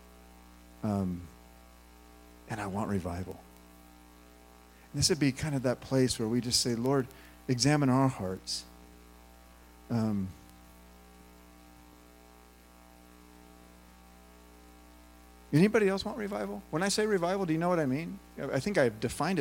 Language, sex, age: English, male, 50-69